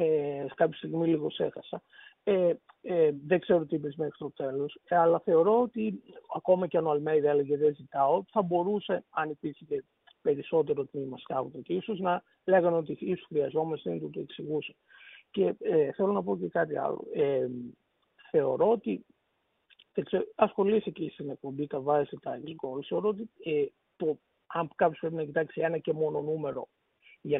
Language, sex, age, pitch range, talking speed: Greek, male, 50-69, 145-200 Hz, 150 wpm